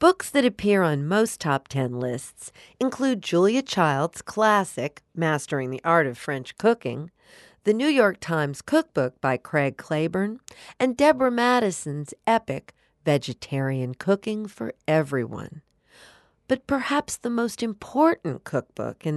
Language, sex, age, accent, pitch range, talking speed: English, female, 50-69, American, 140-220 Hz, 130 wpm